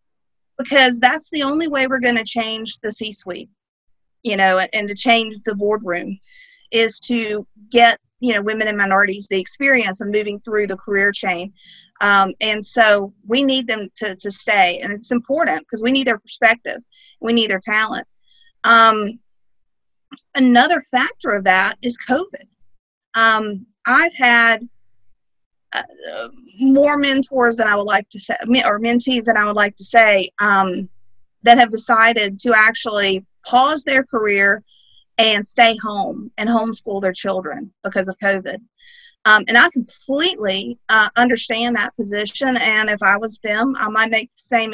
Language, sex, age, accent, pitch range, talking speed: English, female, 40-59, American, 205-250 Hz, 160 wpm